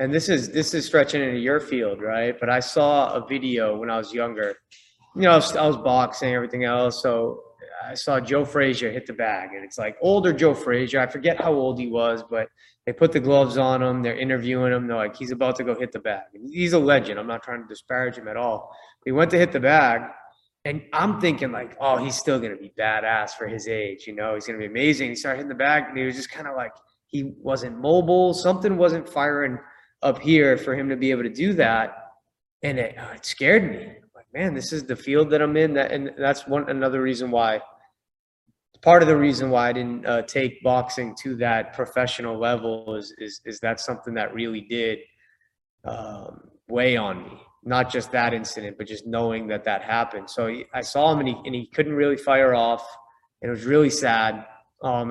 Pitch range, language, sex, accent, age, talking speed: 115-145 Hz, English, male, American, 20-39, 230 wpm